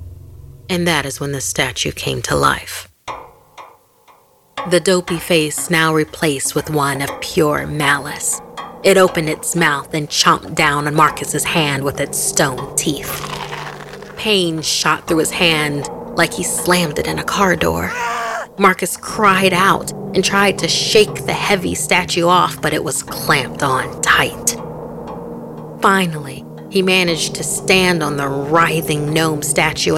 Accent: American